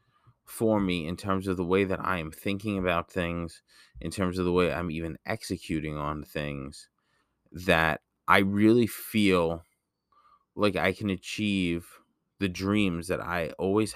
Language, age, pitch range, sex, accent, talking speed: English, 20-39, 85-100 Hz, male, American, 155 wpm